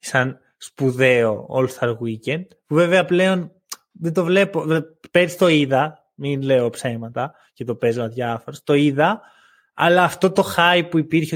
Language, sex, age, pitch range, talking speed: Greek, male, 20-39, 135-185 Hz, 150 wpm